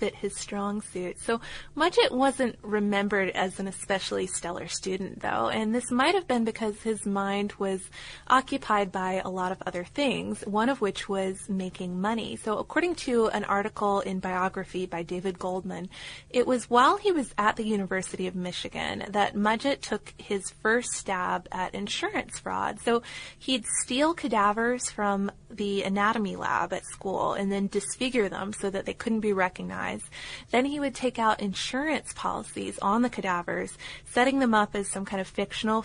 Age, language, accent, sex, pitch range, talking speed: 20-39, English, American, female, 190-225 Hz, 170 wpm